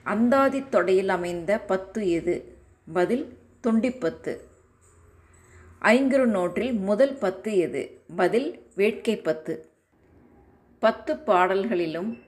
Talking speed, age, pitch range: 85 wpm, 20-39, 160-225 Hz